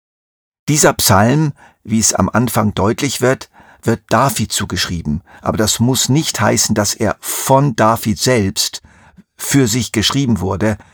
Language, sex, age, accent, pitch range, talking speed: German, male, 50-69, German, 95-125 Hz, 135 wpm